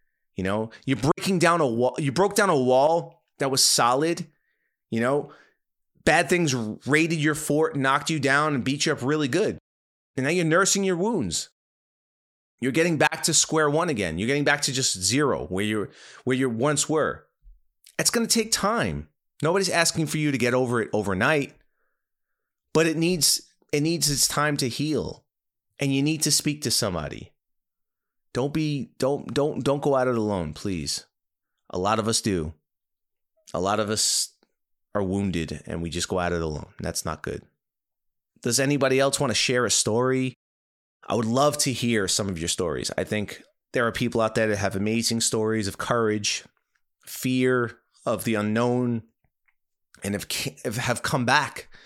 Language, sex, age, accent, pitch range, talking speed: English, male, 30-49, American, 105-150 Hz, 180 wpm